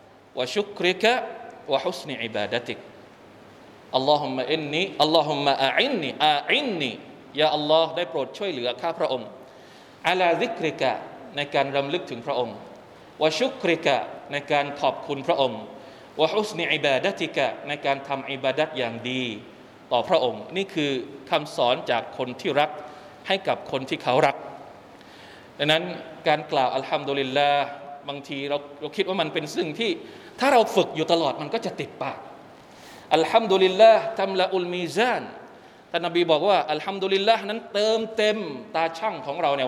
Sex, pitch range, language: male, 140-195 Hz, Thai